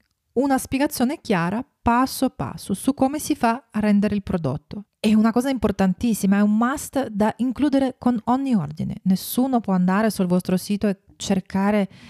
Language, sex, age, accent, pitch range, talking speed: Italian, female, 30-49, native, 175-225 Hz, 165 wpm